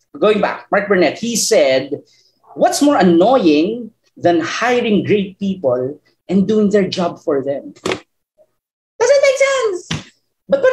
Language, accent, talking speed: Filipino, native, 135 wpm